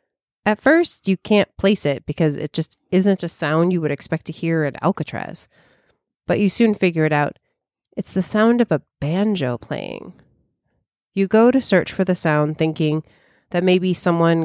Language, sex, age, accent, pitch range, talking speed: English, female, 30-49, American, 150-190 Hz, 180 wpm